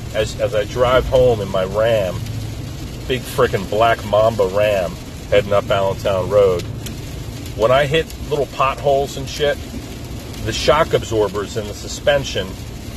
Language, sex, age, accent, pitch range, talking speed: English, male, 40-59, American, 100-130 Hz, 140 wpm